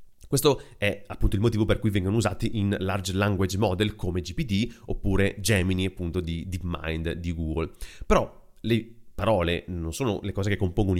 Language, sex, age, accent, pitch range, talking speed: Italian, male, 30-49, native, 95-130 Hz, 170 wpm